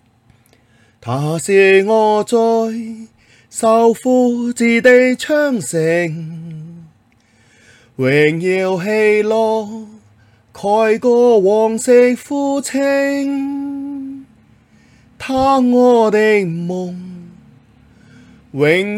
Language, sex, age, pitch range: Chinese, male, 30-49, 150-225 Hz